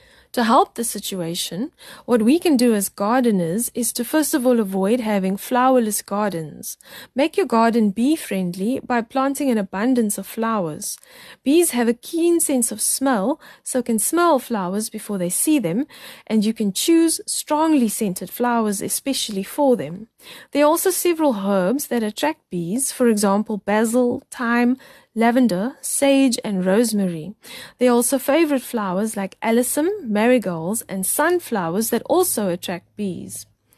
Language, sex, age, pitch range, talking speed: English, female, 20-39, 205-275 Hz, 150 wpm